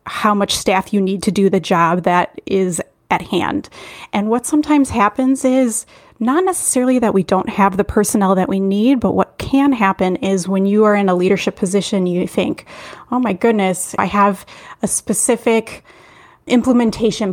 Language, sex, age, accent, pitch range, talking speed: English, female, 30-49, American, 190-230 Hz, 175 wpm